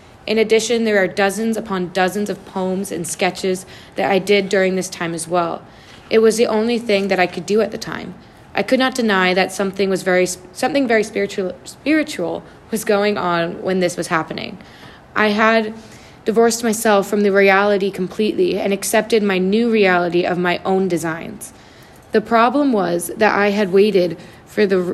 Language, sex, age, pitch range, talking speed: English, female, 20-39, 185-215 Hz, 185 wpm